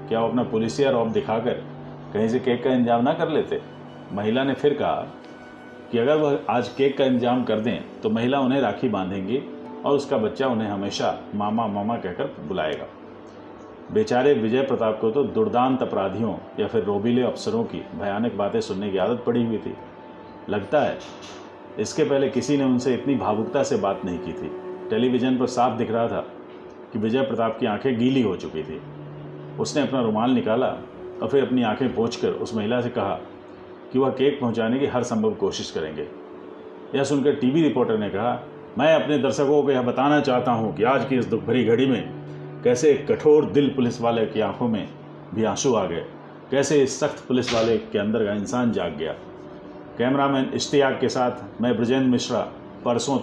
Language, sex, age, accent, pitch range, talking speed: Hindi, male, 40-59, native, 110-135 Hz, 185 wpm